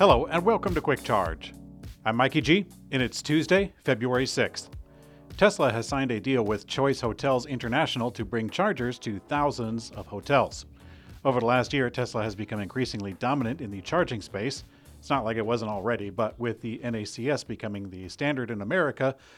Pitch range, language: 105-135 Hz, English